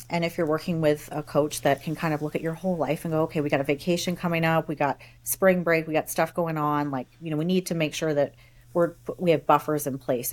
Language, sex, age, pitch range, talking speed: English, female, 30-49, 140-170 Hz, 285 wpm